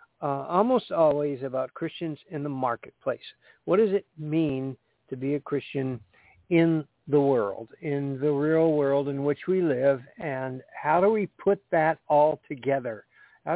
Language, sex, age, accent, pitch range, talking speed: English, male, 60-79, American, 130-165 Hz, 160 wpm